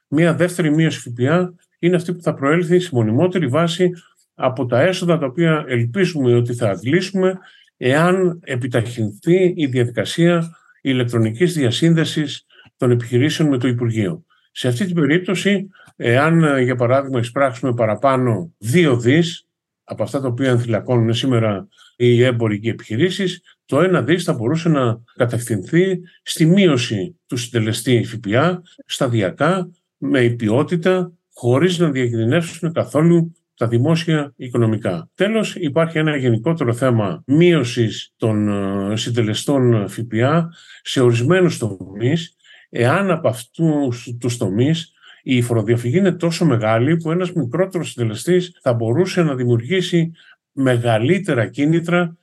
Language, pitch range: Greek, 120-170 Hz